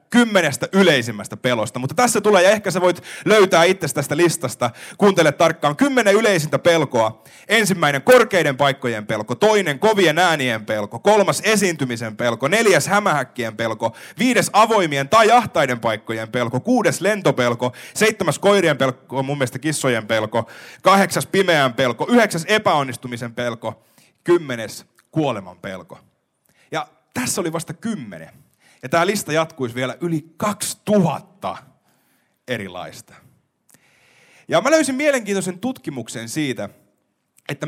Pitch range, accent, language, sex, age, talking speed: 130-210 Hz, native, Finnish, male, 30-49, 120 wpm